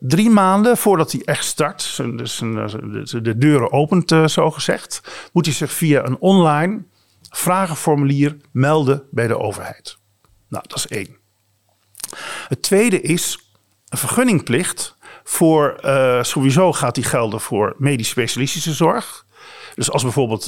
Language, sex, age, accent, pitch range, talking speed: Dutch, male, 50-69, Dutch, 115-170 Hz, 125 wpm